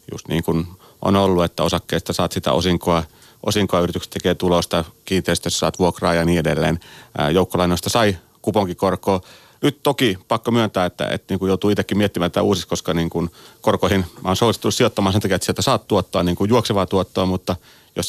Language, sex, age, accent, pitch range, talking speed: Finnish, male, 30-49, native, 90-110 Hz, 170 wpm